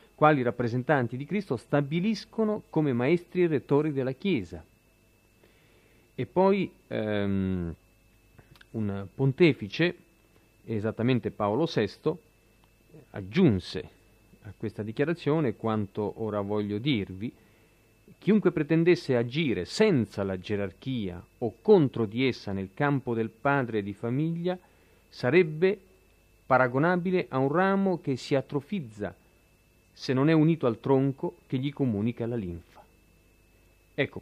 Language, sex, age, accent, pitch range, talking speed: Italian, male, 40-59, native, 100-145 Hz, 110 wpm